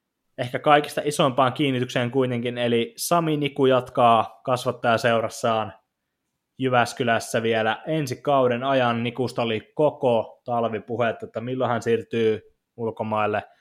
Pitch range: 110-125 Hz